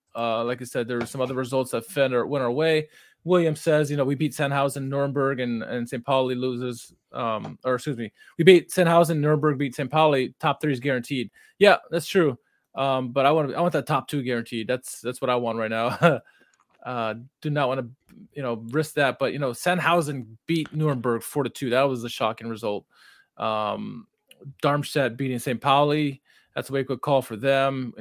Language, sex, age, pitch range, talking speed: English, male, 20-39, 125-155 Hz, 215 wpm